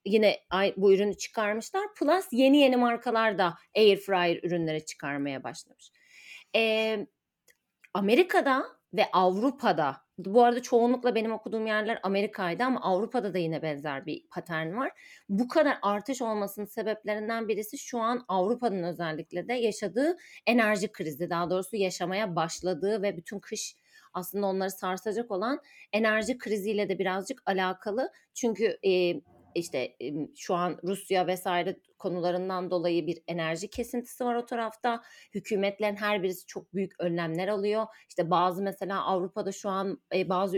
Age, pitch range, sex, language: 40-59, 185-225 Hz, female, Turkish